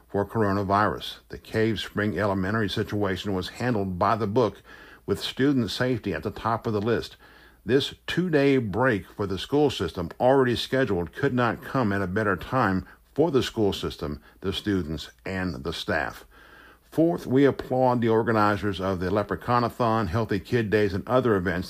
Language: English